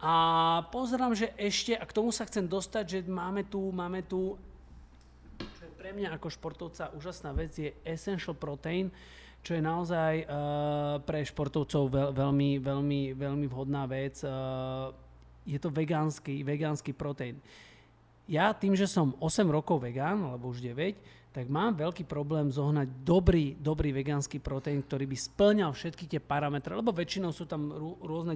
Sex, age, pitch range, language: male, 30-49, 135-175 Hz, Slovak